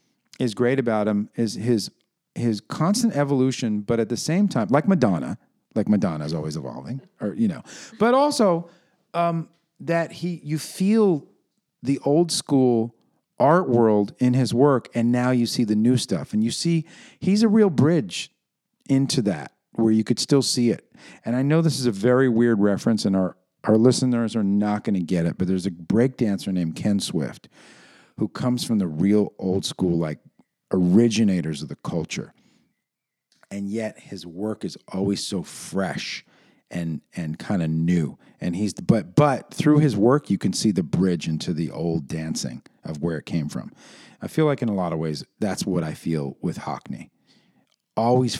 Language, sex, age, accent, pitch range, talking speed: English, male, 50-69, American, 100-150 Hz, 185 wpm